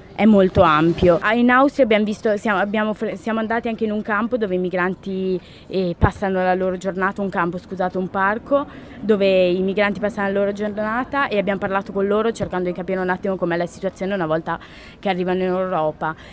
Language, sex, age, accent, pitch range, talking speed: Italian, female, 20-39, native, 185-215 Hz, 195 wpm